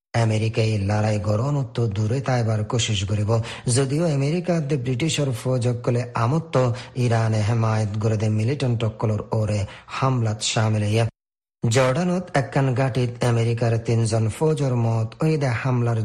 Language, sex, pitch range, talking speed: Bengali, male, 115-135 Hz, 80 wpm